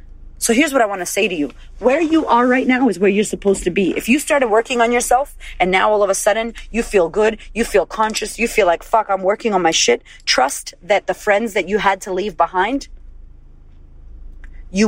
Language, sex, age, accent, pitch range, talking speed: English, female, 30-49, American, 175-240 Hz, 235 wpm